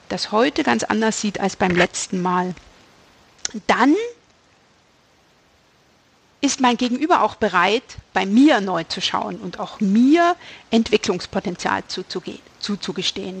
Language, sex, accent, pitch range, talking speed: German, female, German, 190-250 Hz, 110 wpm